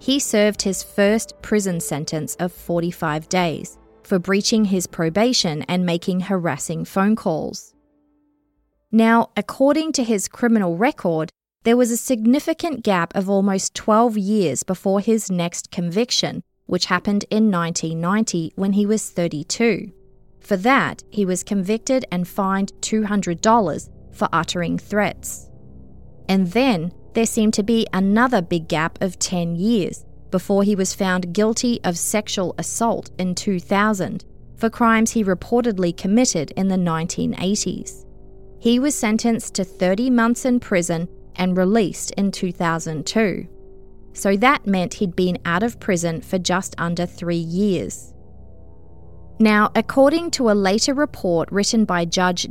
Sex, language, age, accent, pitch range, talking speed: female, English, 20-39, Australian, 170-225 Hz, 135 wpm